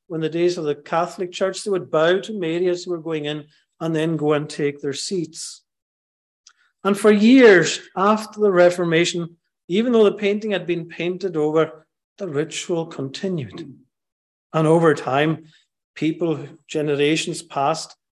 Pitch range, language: 145-180 Hz, English